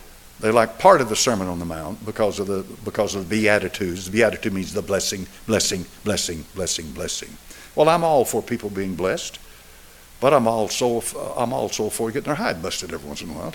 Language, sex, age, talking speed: English, male, 60-79, 210 wpm